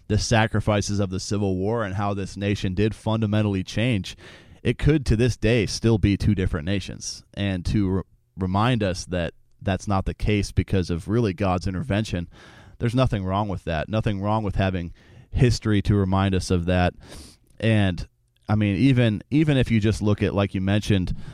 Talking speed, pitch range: 185 wpm, 95-110 Hz